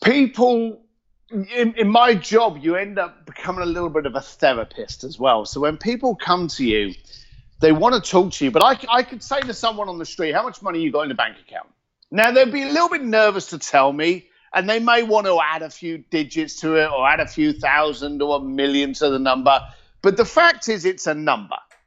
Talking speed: 240 wpm